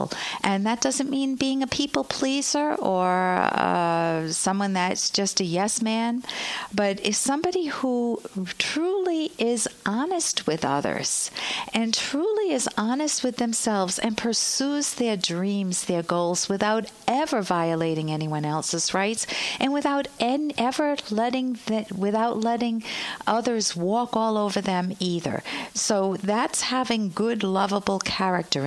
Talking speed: 130 wpm